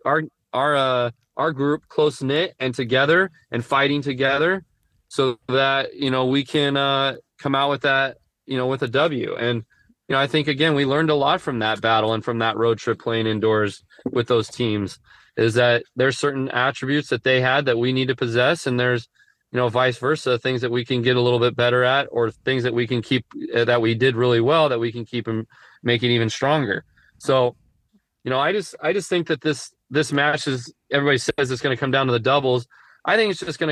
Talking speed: 230 wpm